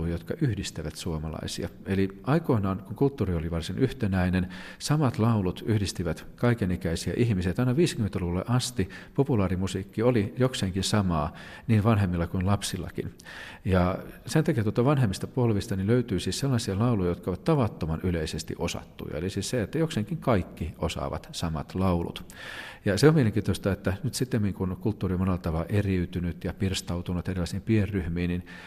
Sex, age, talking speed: male, 40-59, 140 wpm